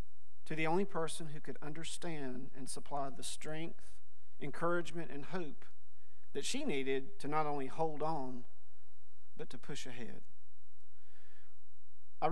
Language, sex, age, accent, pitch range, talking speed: English, male, 40-59, American, 100-150 Hz, 130 wpm